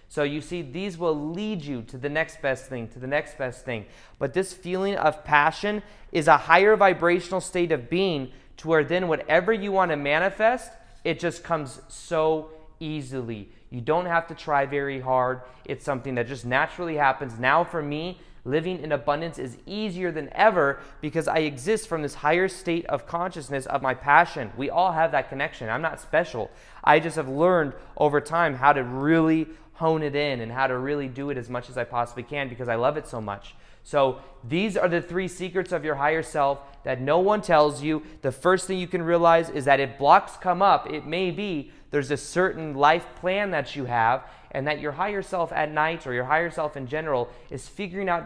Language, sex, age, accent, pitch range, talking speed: English, male, 20-39, American, 135-170 Hz, 210 wpm